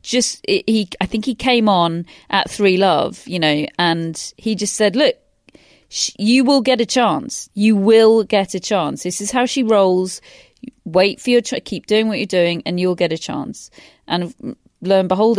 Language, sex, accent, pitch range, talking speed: English, female, British, 170-210 Hz, 200 wpm